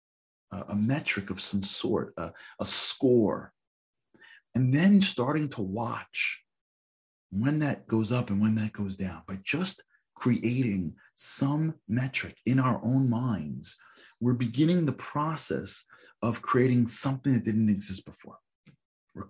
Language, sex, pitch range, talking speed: English, male, 100-130 Hz, 135 wpm